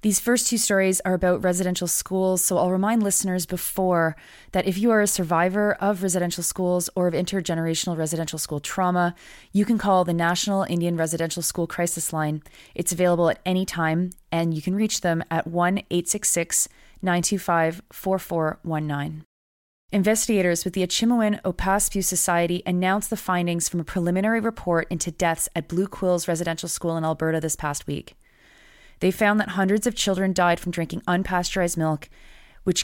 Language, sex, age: English, female, 30-49